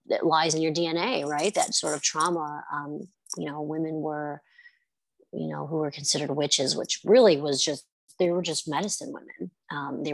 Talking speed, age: 190 wpm, 30-49